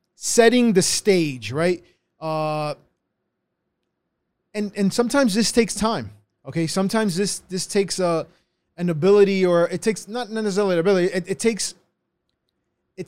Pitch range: 170-210 Hz